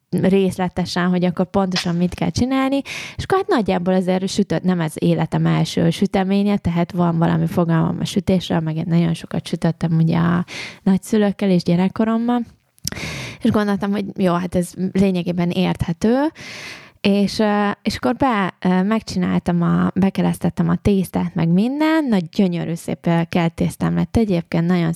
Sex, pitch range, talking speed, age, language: female, 170-210 Hz, 140 wpm, 20-39, Hungarian